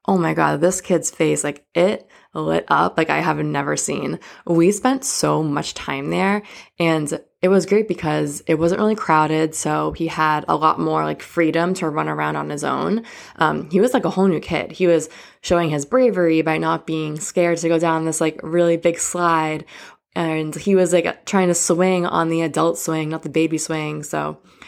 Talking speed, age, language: 205 wpm, 20-39, English